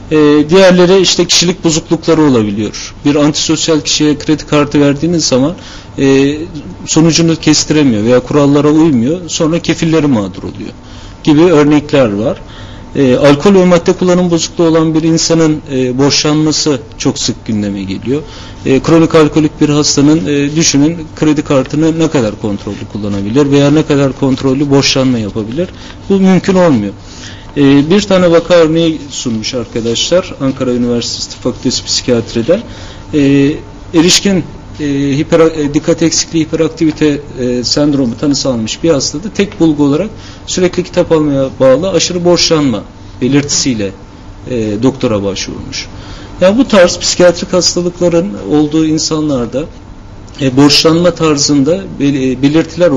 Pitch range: 125-165 Hz